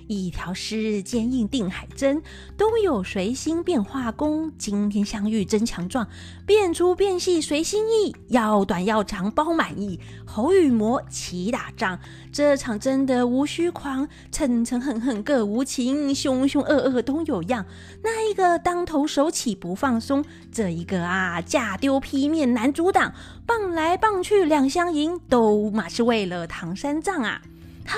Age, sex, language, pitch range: 30-49, female, Chinese, 225-330 Hz